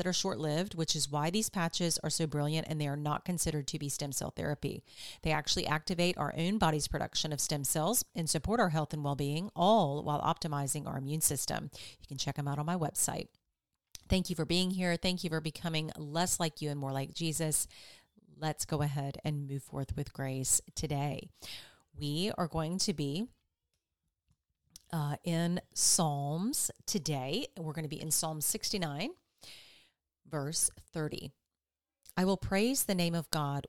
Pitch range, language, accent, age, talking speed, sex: 145-180 Hz, English, American, 40-59, 180 wpm, female